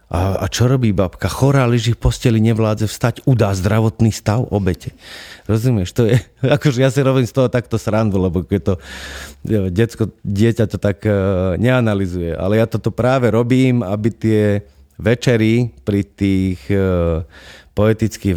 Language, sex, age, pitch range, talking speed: Slovak, male, 30-49, 90-110 Hz, 155 wpm